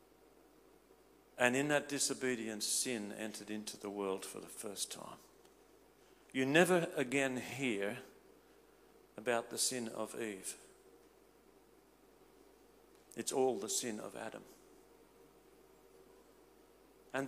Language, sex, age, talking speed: English, male, 50-69, 100 wpm